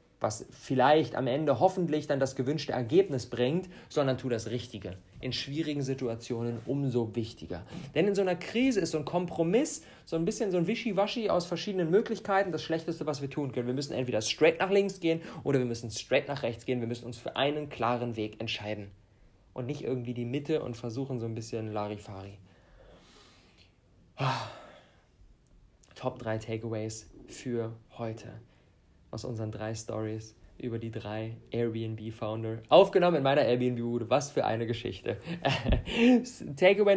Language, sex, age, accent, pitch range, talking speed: German, male, 40-59, German, 115-150 Hz, 160 wpm